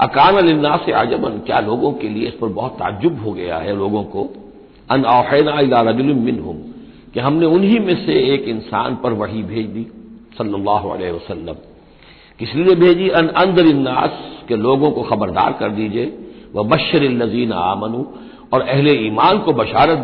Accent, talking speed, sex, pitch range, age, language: native, 145 wpm, male, 115-155 Hz, 60-79, Hindi